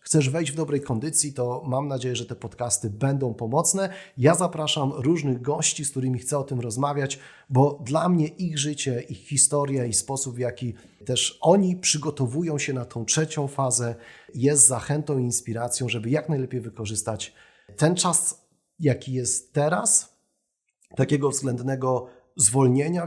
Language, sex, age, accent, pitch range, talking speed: Polish, male, 30-49, native, 120-155 Hz, 150 wpm